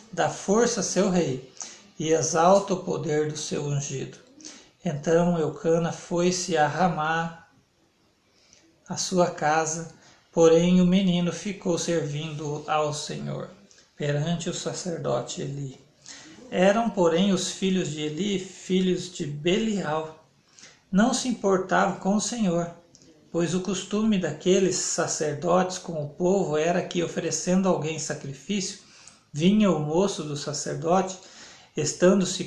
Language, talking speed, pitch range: Portuguese, 120 wpm, 155-185 Hz